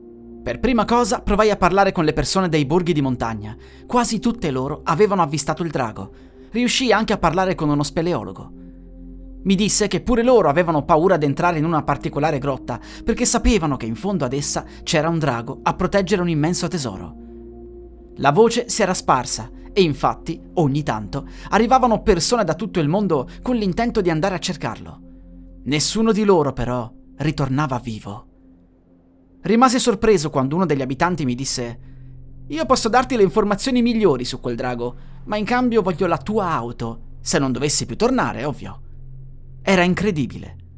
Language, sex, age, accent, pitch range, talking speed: Italian, male, 30-49, native, 125-200 Hz, 170 wpm